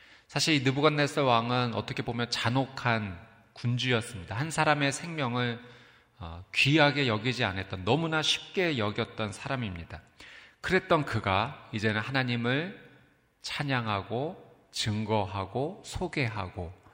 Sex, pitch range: male, 105-140 Hz